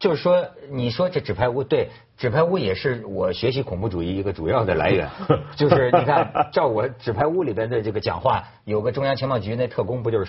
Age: 50-69